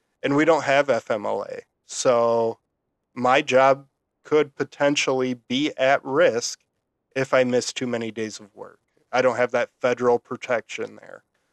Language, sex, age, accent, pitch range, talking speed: English, male, 20-39, American, 120-135 Hz, 145 wpm